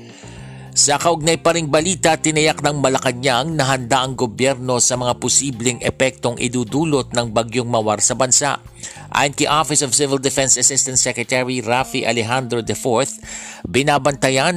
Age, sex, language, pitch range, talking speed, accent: 50-69, male, Filipino, 115-135 Hz, 130 wpm, native